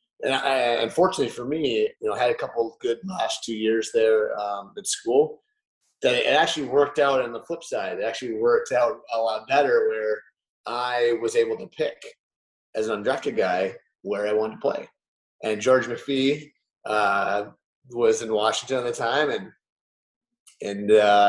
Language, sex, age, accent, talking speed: English, male, 30-49, American, 180 wpm